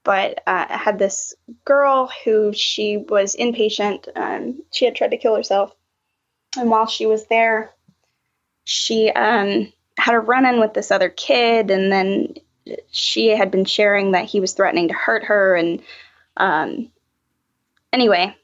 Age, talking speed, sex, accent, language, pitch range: 20-39, 150 wpm, female, American, English, 185-225 Hz